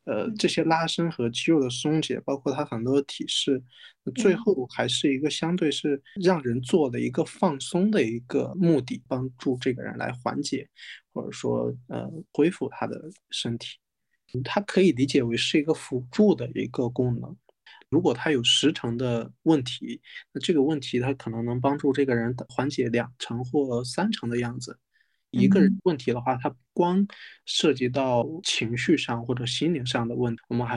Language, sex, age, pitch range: Chinese, male, 20-39, 125-150 Hz